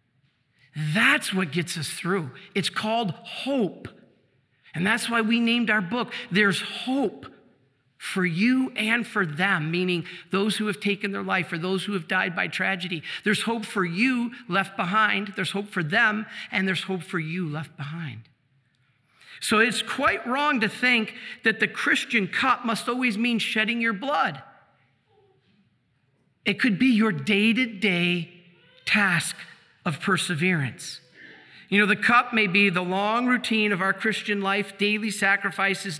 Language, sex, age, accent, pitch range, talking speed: English, male, 50-69, American, 170-220 Hz, 155 wpm